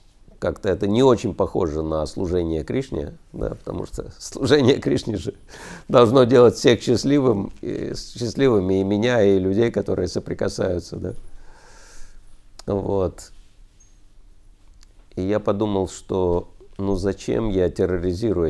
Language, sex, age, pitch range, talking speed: Russian, male, 50-69, 95-115 Hz, 105 wpm